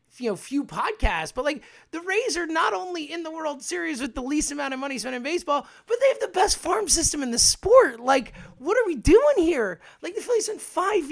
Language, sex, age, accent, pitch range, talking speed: English, male, 30-49, American, 215-305 Hz, 245 wpm